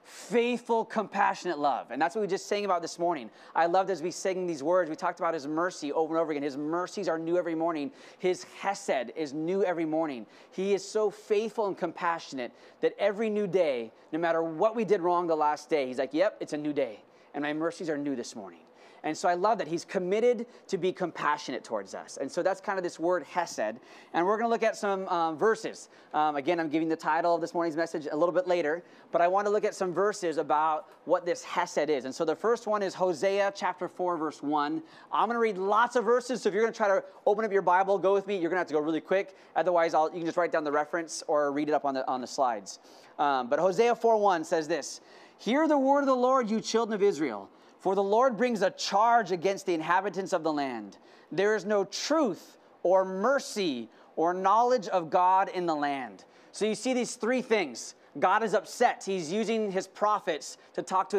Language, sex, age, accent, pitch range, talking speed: English, male, 20-39, American, 165-215 Hz, 235 wpm